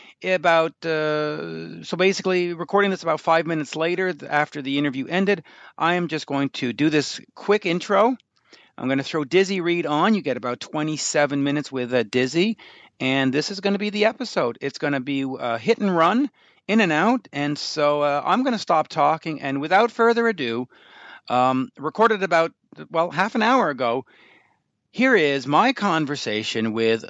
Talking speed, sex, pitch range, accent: 180 wpm, male, 130-175 Hz, American